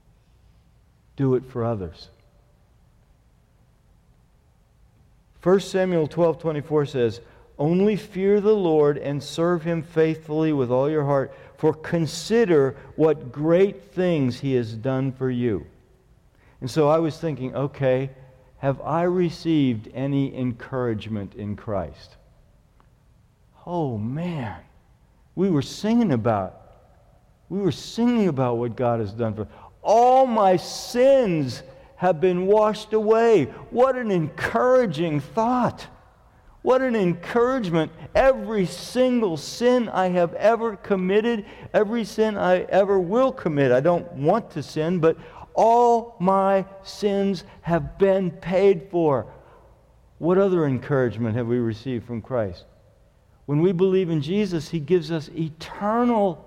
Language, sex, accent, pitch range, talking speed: English, male, American, 130-195 Hz, 125 wpm